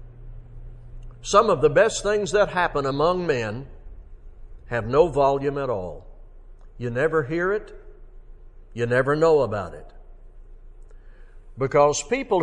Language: English